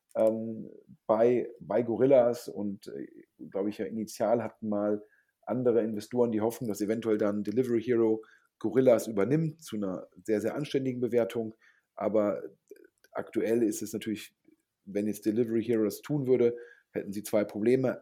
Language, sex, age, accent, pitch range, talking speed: German, male, 40-59, German, 110-130 Hz, 140 wpm